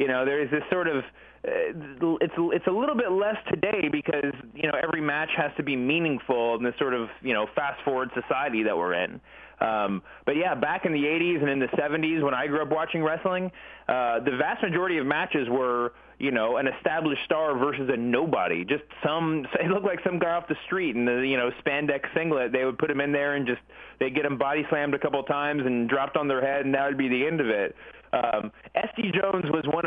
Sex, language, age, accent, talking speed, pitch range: male, English, 30-49, American, 235 wpm, 130-165 Hz